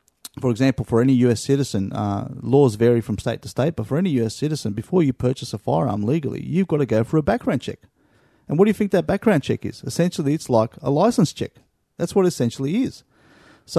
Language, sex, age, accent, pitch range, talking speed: English, male, 30-49, Australian, 110-145 Hz, 230 wpm